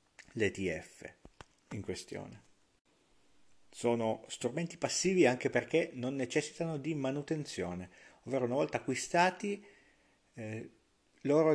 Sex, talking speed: male, 95 wpm